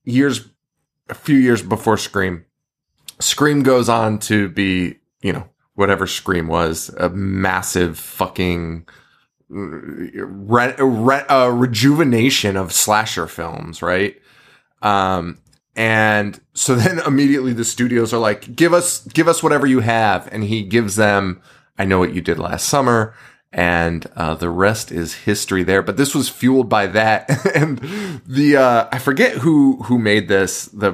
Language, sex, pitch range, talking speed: English, male, 95-135 Hz, 145 wpm